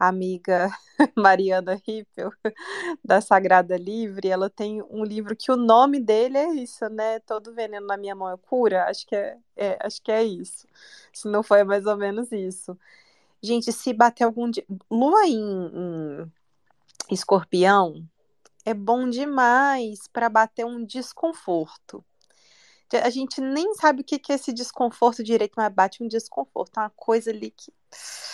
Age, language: 20-39, Portuguese